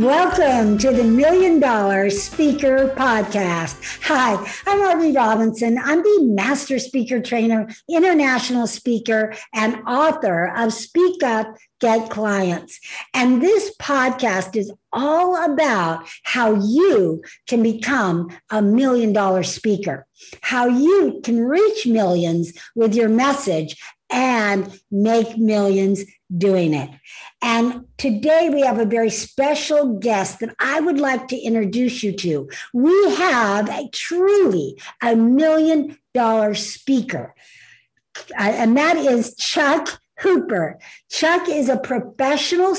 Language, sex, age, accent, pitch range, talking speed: English, female, 60-79, American, 215-305 Hz, 120 wpm